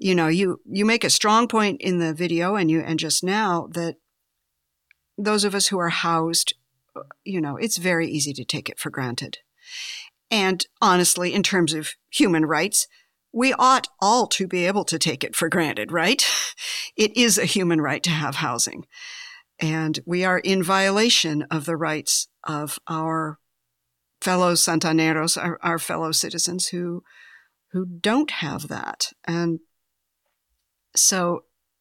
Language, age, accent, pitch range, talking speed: English, 50-69, American, 155-195 Hz, 155 wpm